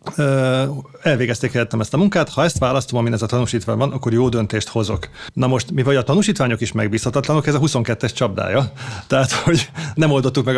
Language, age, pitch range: Hungarian, 30-49, 115-145 Hz